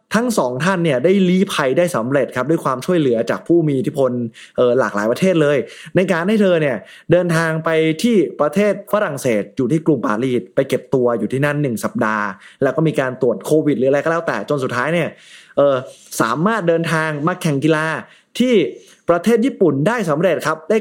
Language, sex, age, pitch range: Thai, male, 20-39, 130-175 Hz